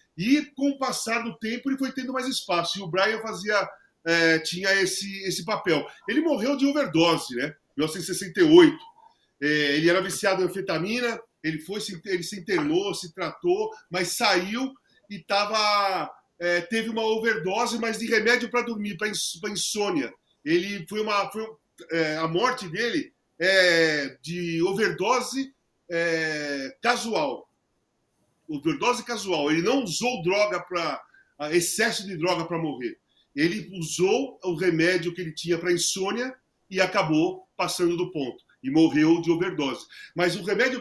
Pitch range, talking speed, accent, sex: 175-245 Hz, 150 wpm, Brazilian, male